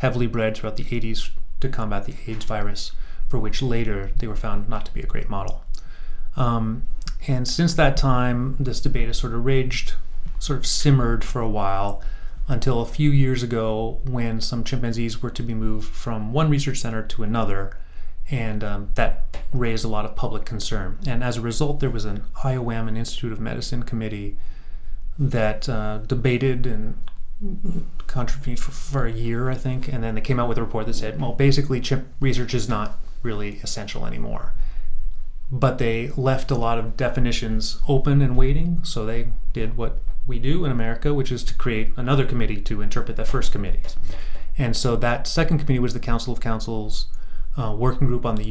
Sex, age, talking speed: male, 30-49, 190 wpm